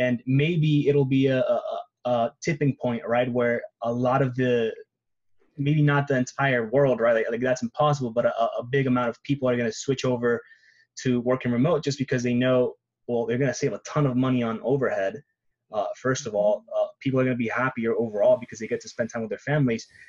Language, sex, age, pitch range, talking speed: English, male, 20-39, 120-145 Hz, 215 wpm